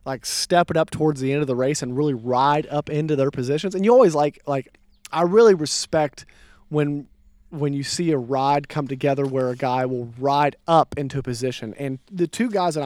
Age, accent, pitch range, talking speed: 30-49, American, 130-160 Hz, 220 wpm